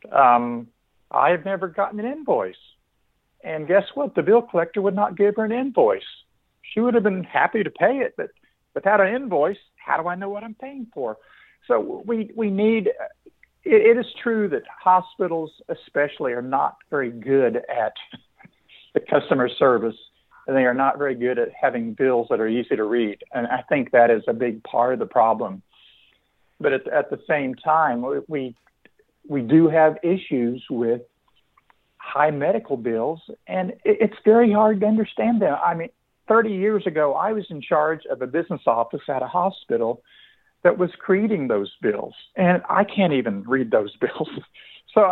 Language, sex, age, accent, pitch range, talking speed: English, male, 50-69, American, 135-220 Hz, 180 wpm